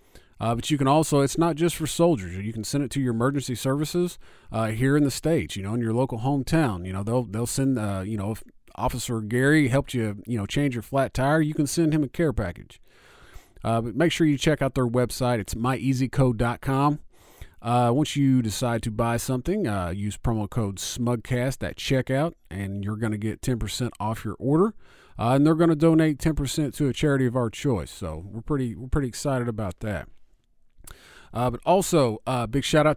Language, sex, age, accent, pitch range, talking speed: English, male, 40-59, American, 110-140 Hz, 210 wpm